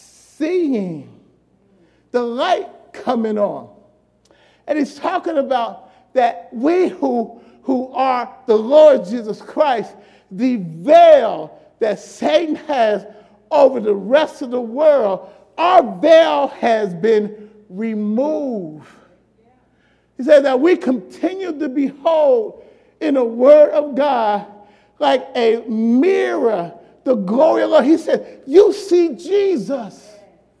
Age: 40-59